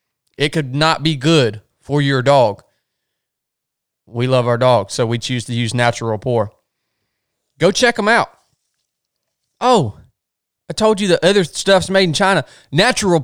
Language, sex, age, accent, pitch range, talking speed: English, male, 20-39, American, 115-165 Hz, 155 wpm